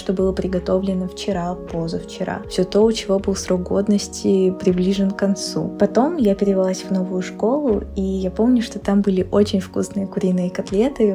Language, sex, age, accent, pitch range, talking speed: Russian, female, 20-39, native, 190-220 Hz, 165 wpm